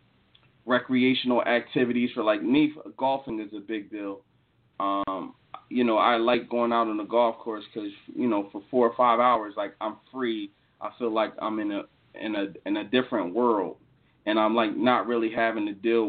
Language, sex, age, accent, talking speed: English, male, 30-49, American, 195 wpm